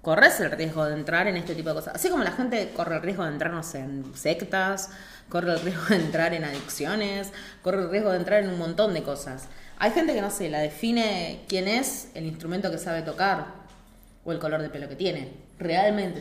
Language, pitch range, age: Spanish, 155-210 Hz, 20-39